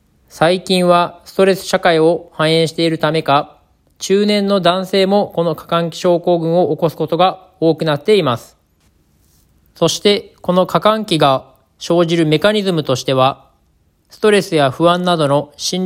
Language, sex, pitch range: Japanese, male, 150-180 Hz